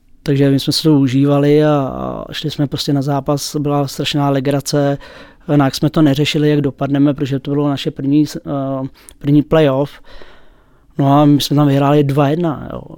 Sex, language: male, English